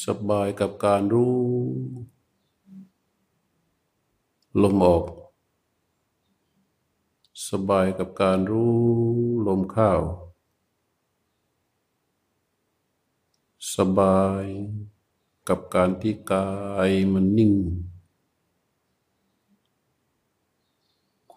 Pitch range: 90-105 Hz